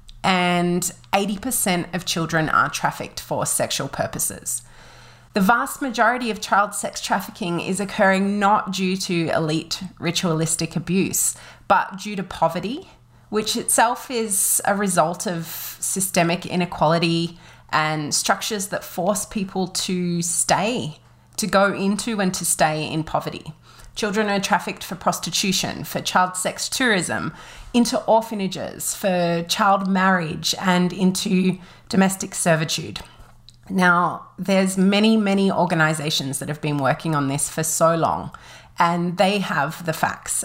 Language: English